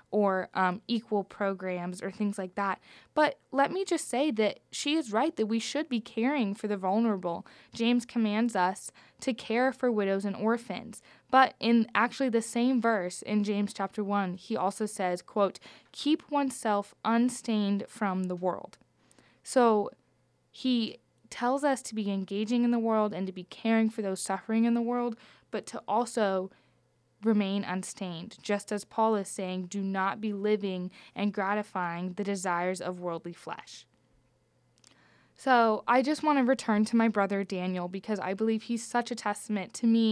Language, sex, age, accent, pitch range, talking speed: English, female, 10-29, American, 195-235 Hz, 170 wpm